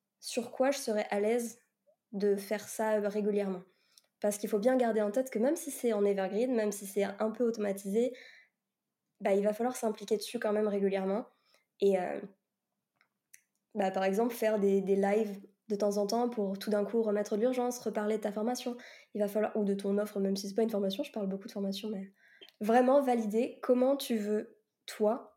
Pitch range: 205-235 Hz